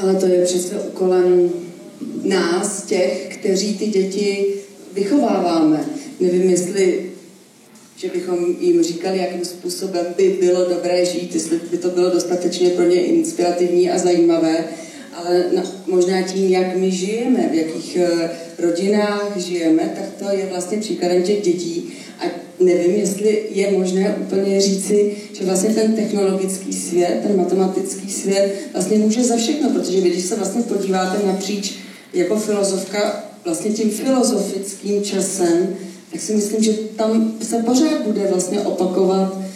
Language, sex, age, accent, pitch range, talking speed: Czech, female, 30-49, native, 180-205 Hz, 140 wpm